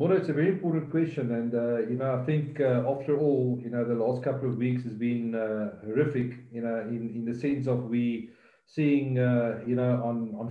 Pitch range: 125-155 Hz